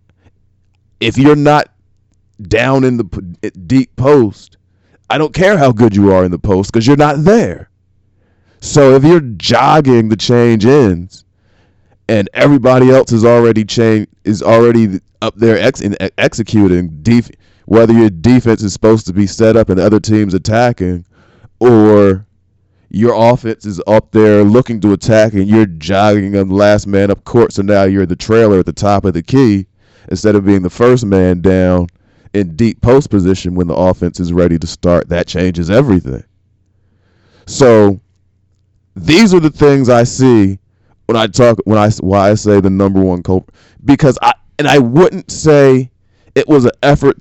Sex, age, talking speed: male, 20-39, 170 wpm